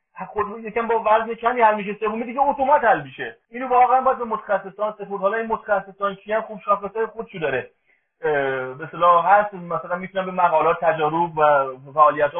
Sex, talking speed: male, 165 wpm